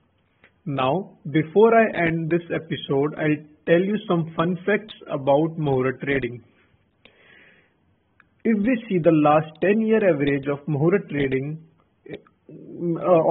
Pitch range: 150-180 Hz